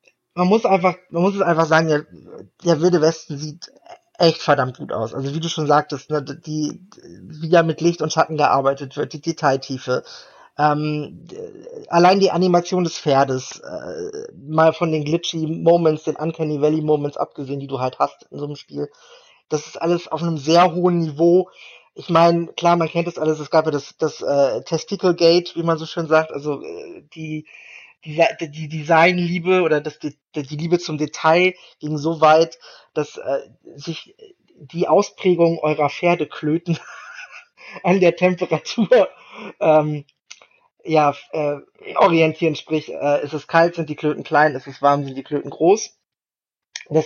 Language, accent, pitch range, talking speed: German, German, 150-175 Hz, 170 wpm